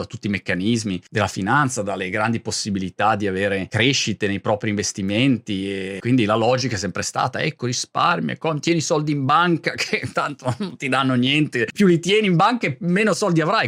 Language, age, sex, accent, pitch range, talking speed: Italian, 30-49, male, native, 115-170 Hz, 195 wpm